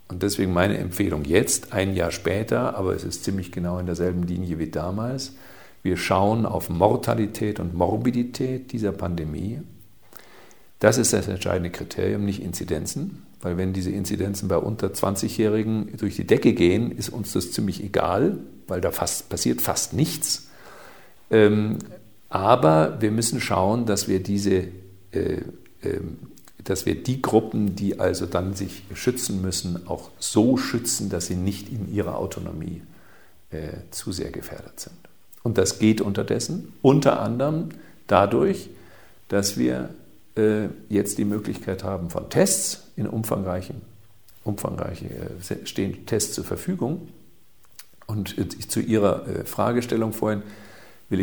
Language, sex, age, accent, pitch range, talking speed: German, male, 50-69, German, 95-110 Hz, 140 wpm